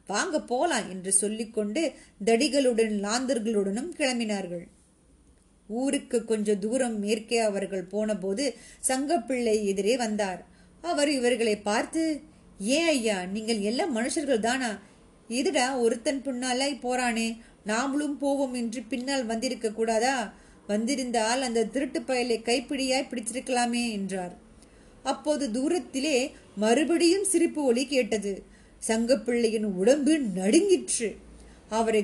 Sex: female